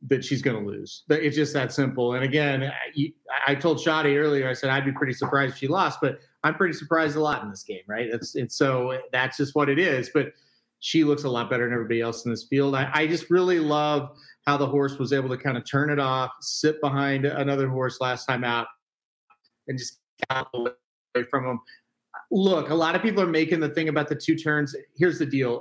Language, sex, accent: English, male, American